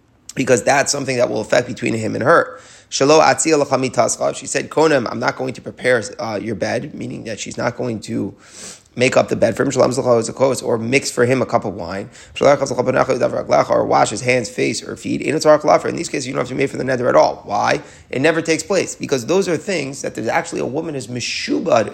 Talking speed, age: 210 wpm, 30-49